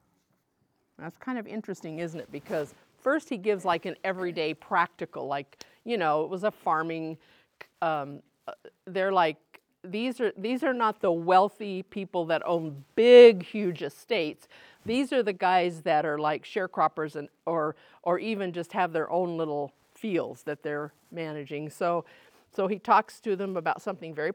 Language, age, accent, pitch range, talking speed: English, 50-69, American, 165-220 Hz, 165 wpm